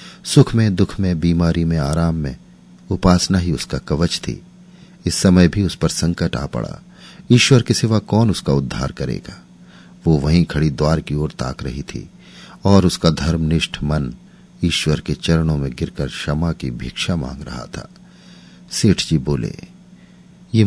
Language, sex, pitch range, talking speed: Hindi, male, 80-130 Hz, 165 wpm